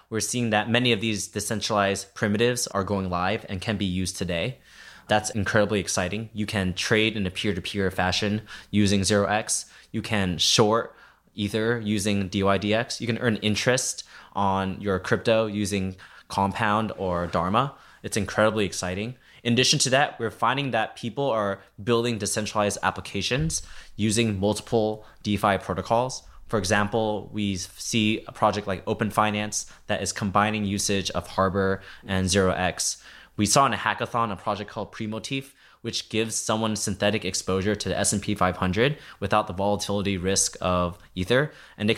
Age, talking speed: 20-39, 155 wpm